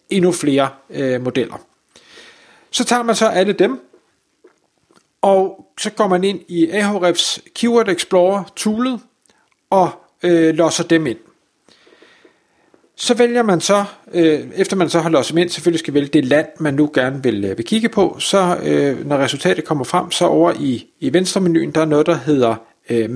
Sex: male